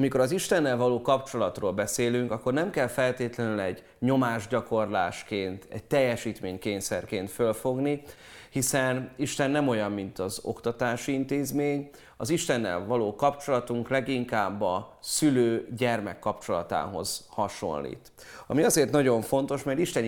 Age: 30-49